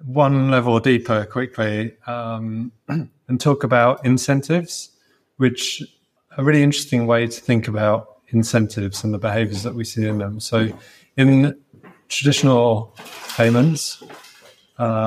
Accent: British